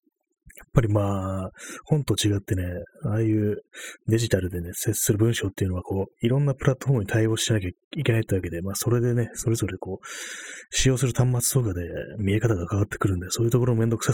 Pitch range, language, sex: 95-135 Hz, Japanese, male